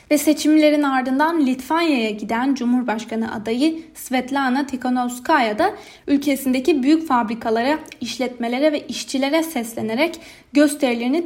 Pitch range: 230-300 Hz